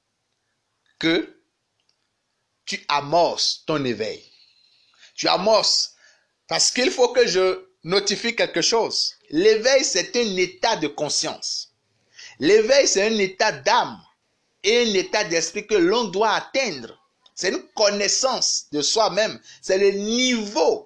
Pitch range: 165-240 Hz